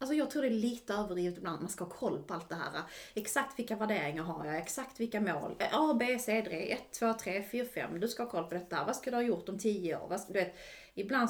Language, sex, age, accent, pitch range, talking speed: English, female, 30-49, Swedish, 175-225 Hz, 270 wpm